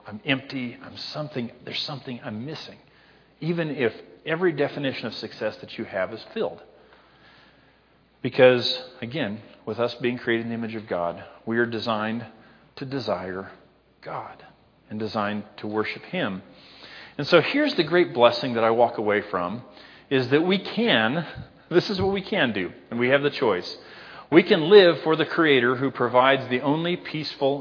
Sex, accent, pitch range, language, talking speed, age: male, American, 110-160 Hz, English, 170 wpm, 40-59